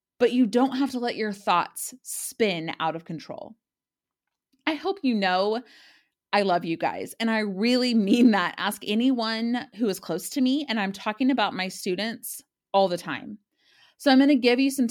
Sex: female